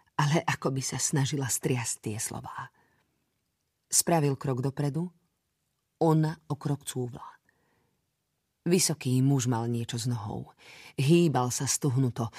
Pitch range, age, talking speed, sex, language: 125-160 Hz, 40-59, 110 wpm, female, Slovak